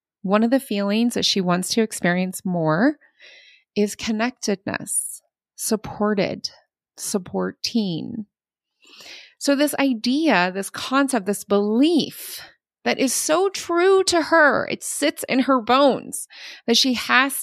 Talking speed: 120 wpm